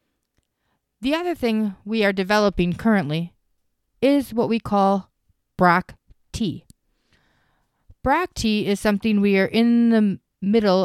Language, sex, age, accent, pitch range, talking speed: English, female, 30-49, American, 180-230 Hz, 120 wpm